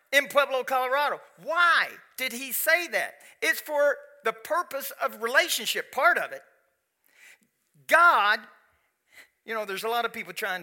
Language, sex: English, male